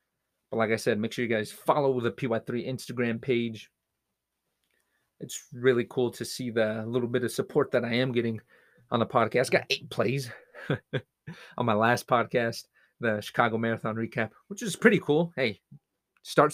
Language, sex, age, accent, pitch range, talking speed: English, male, 30-49, American, 115-140 Hz, 175 wpm